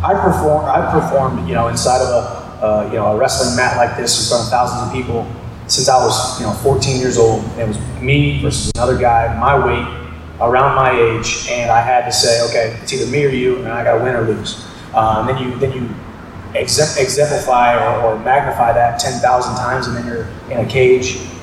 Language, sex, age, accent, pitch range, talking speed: English, male, 30-49, American, 115-130 Hz, 230 wpm